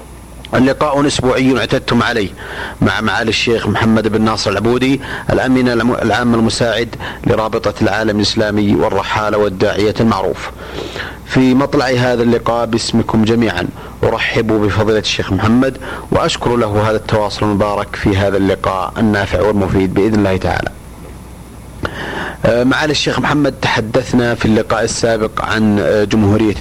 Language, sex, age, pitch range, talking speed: Arabic, male, 40-59, 105-120 Hz, 115 wpm